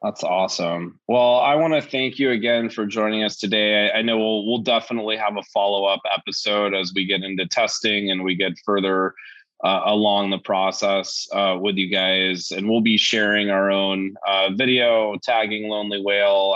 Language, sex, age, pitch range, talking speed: English, male, 20-39, 95-110 Hz, 190 wpm